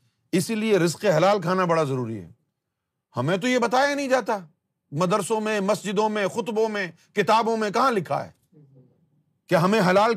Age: 50-69